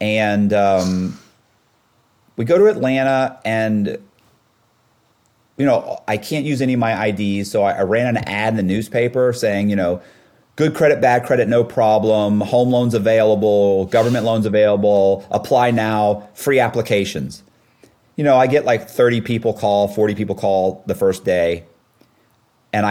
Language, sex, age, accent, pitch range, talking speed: English, male, 30-49, American, 100-120 Hz, 155 wpm